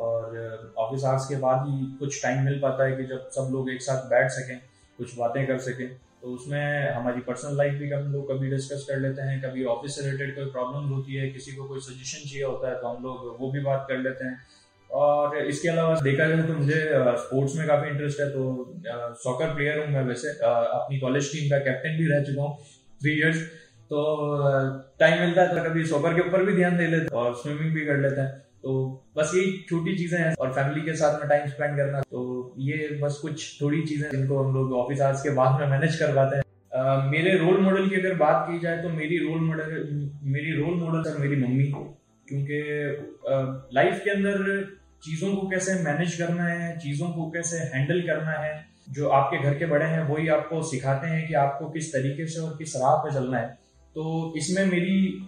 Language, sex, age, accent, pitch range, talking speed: Hindi, male, 20-39, native, 130-160 Hz, 190 wpm